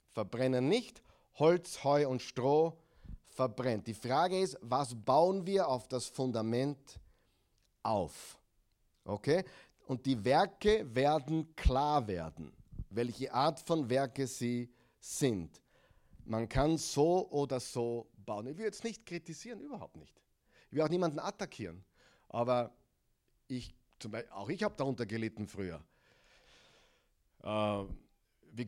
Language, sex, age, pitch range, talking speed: German, male, 50-69, 120-160 Hz, 120 wpm